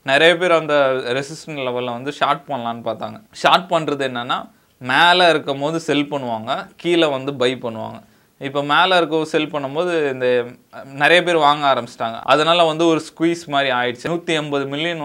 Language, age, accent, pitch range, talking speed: Tamil, 20-39, native, 120-155 Hz, 165 wpm